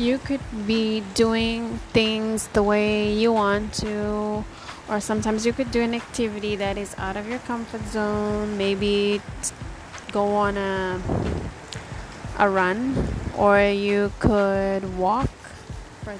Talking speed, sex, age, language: 135 wpm, female, 20-39, English